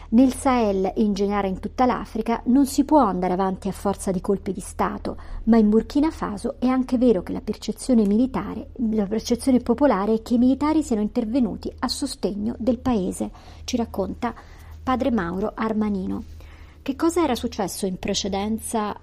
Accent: native